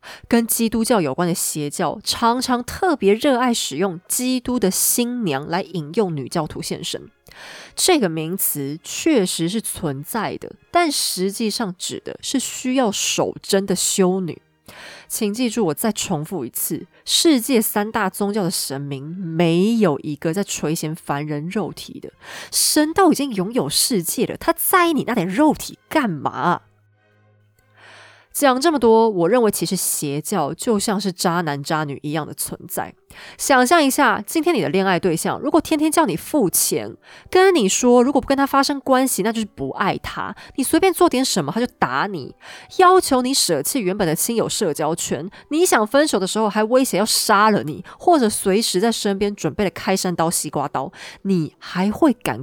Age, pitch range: 20-39, 170-255 Hz